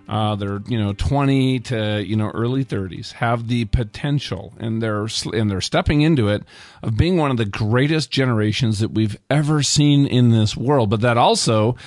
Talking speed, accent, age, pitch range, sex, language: 210 wpm, American, 40-59, 105-130 Hz, male, English